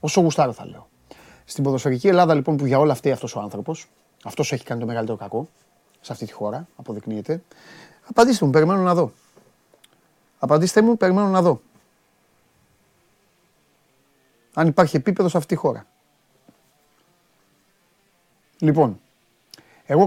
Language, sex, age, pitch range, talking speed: Greek, male, 30-49, 115-155 Hz, 135 wpm